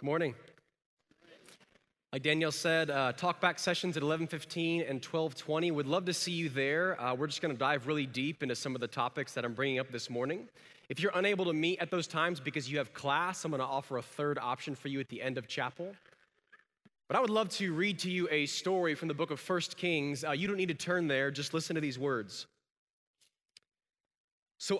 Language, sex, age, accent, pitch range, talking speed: English, male, 20-39, American, 135-180 Hz, 220 wpm